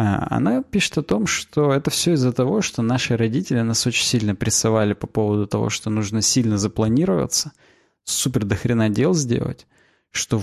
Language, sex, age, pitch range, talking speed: Russian, male, 20-39, 110-135 Hz, 165 wpm